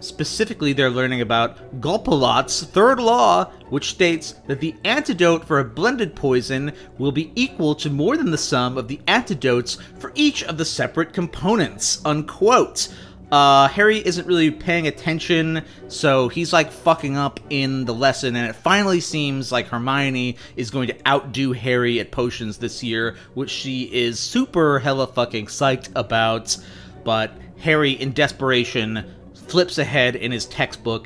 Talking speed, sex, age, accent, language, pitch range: 155 wpm, male, 30-49, American, English, 120-150 Hz